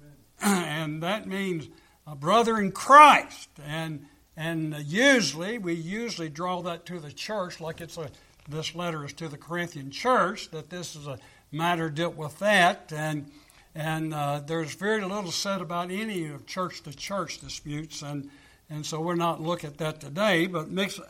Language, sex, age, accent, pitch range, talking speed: English, male, 60-79, American, 155-190 Hz, 170 wpm